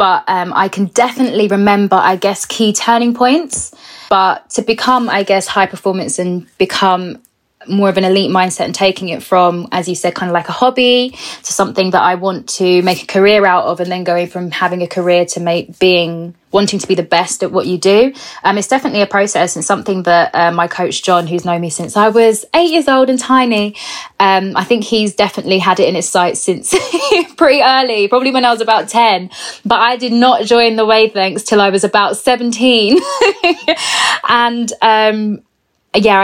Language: English